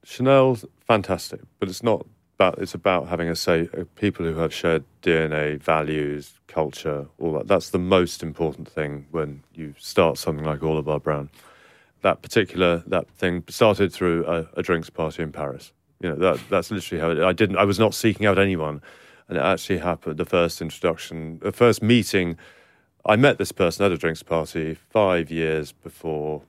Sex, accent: male, British